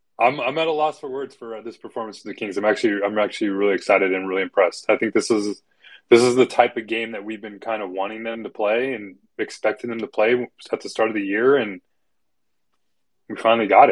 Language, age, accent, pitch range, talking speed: English, 20-39, American, 105-165 Hz, 245 wpm